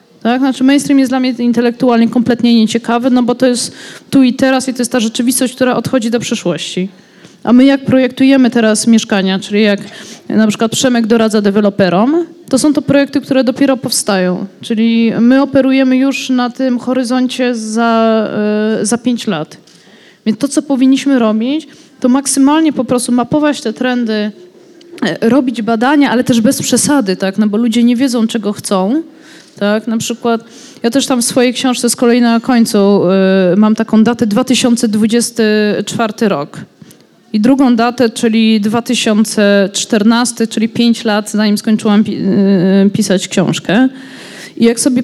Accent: native